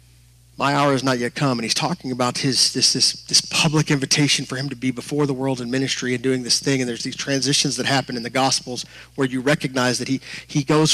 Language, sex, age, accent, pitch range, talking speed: English, male, 30-49, American, 115-155 Hz, 245 wpm